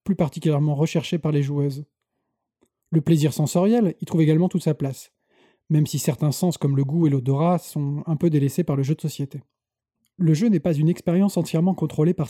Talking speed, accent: 205 wpm, French